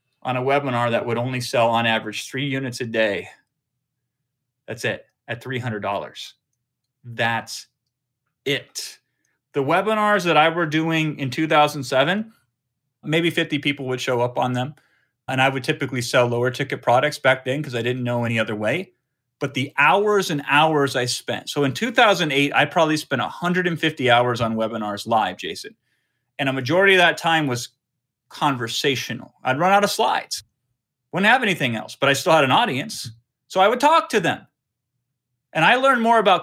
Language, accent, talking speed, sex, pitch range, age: English, American, 175 wpm, male, 125-170 Hz, 30-49